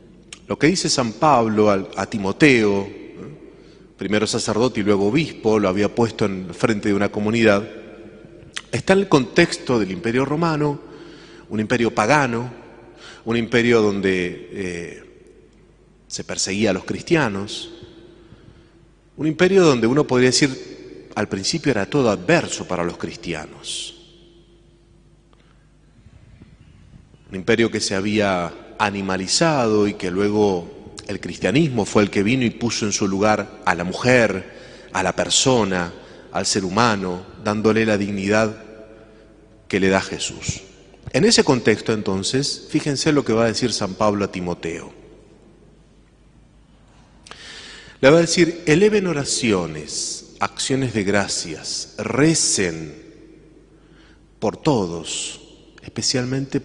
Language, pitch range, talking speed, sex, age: Spanish, 100-130 Hz, 125 wpm, male, 30-49